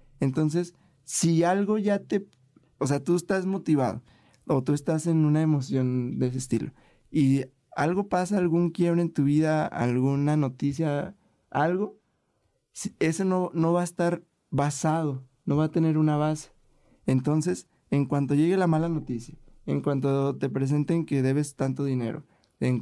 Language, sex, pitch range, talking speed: Spanish, male, 130-165 Hz, 155 wpm